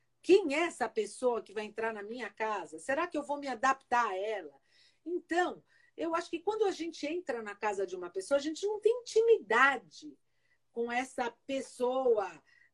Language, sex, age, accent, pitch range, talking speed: Portuguese, female, 50-69, Brazilian, 220-335 Hz, 185 wpm